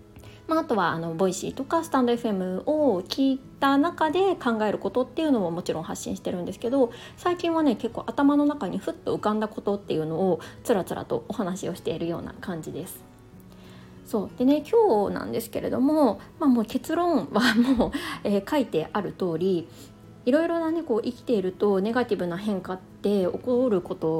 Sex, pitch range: female, 190-270 Hz